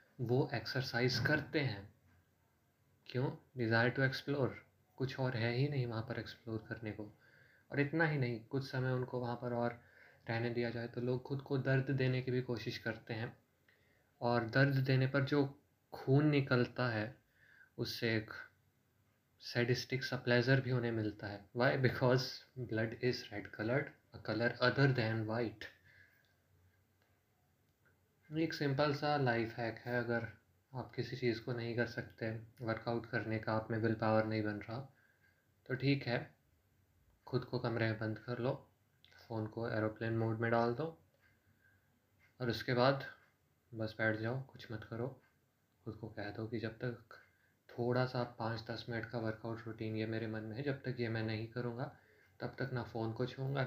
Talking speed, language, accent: 170 wpm, Hindi, native